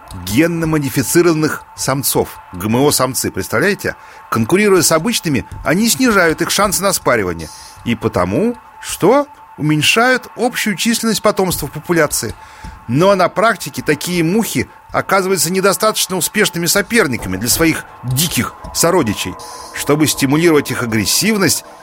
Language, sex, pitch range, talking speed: Russian, male, 135-195 Hz, 105 wpm